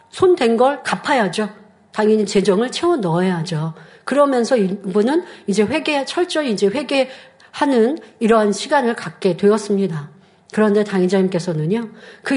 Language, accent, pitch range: Korean, native, 195-270 Hz